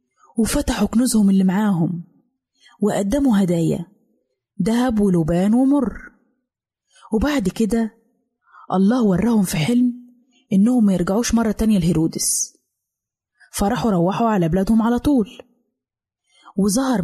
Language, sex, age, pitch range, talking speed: Arabic, female, 20-39, 190-245 Hz, 100 wpm